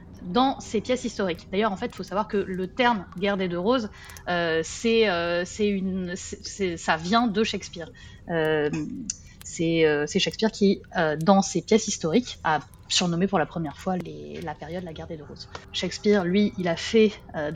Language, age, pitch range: French, 30-49, 165-210 Hz